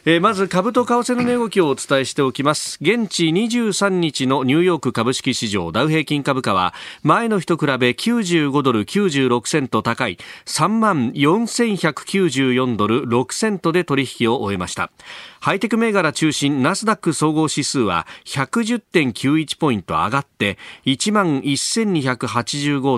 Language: Japanese